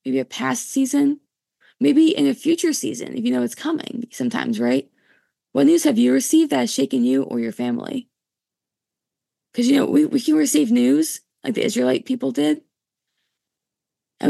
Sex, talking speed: female, 175 wpm